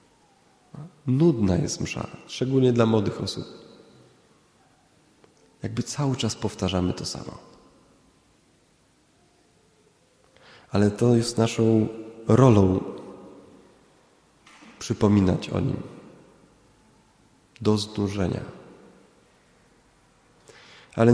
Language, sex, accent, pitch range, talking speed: Polish, male, native, 100-120 Hz, 70 wpm